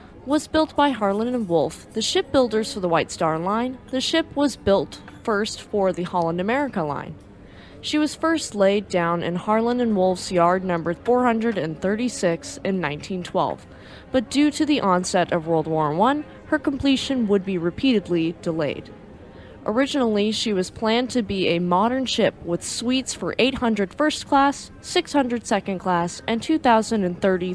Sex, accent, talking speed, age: female, American, 150 wpm, 20-39